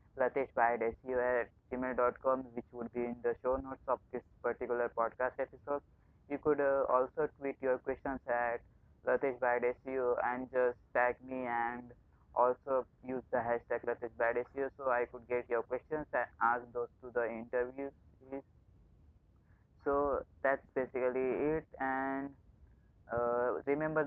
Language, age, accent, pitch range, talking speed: English, 20-39, Indian, 120-135 Hz, 135 wpm